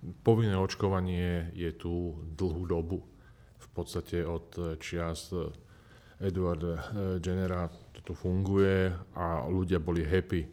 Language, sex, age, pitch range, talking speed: Slovak, male, 40-59, 85-100 Hz, 105 wpm